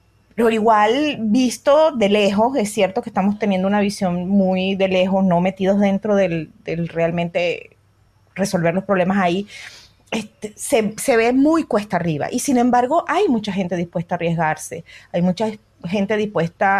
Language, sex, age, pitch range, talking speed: Spanish, female, 30-49, 190-245 Hz, 160 wpm